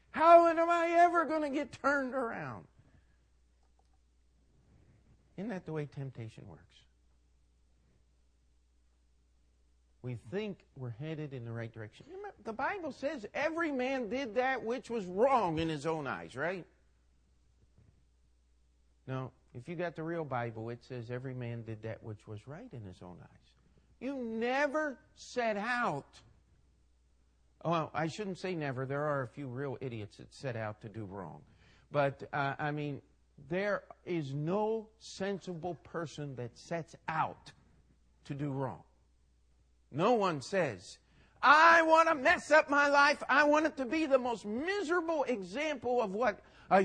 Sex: male